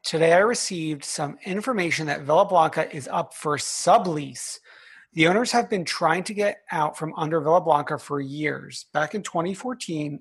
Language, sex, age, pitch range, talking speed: English, male, 30-49, 155-195 Hz, 170 wpm